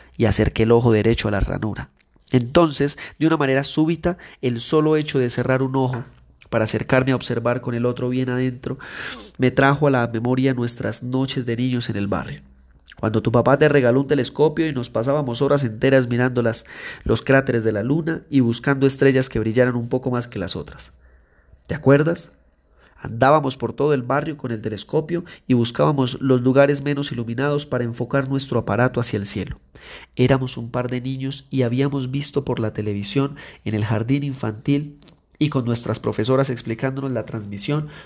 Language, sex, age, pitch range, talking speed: Spanish, male, 30-49, 115-140 Hz, 180 wpm